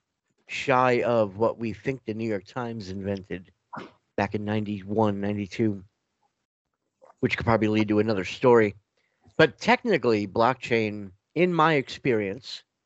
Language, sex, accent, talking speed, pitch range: English, male, American, 125 wpm, 110-130 Hz